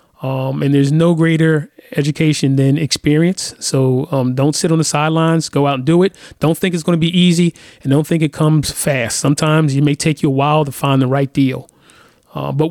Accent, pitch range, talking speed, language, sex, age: American, 140-175 Hz, 220 wpm, English, male, 30-49